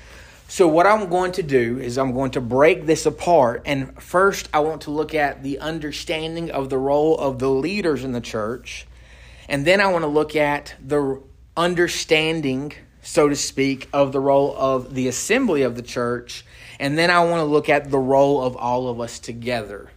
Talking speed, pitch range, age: 200 wpm, 120-155 Hz, 30-49